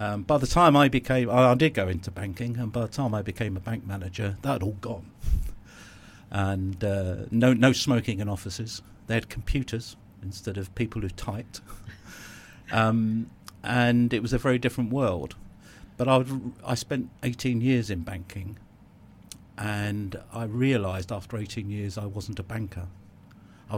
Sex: male